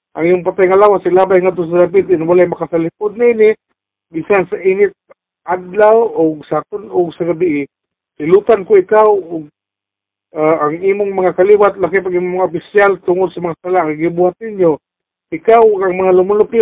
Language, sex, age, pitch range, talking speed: Filipino, male, 50-69, 170-200 Hz, 170 wpm